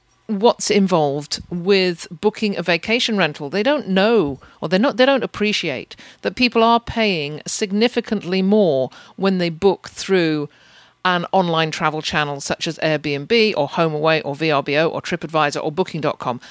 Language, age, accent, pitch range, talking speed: English, 50-69, British, 155-210 Hz, 155 wpm